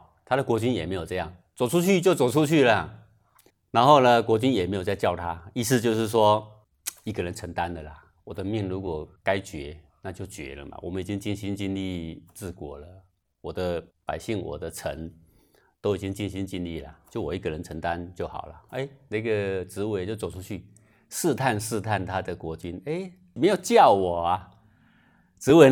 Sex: male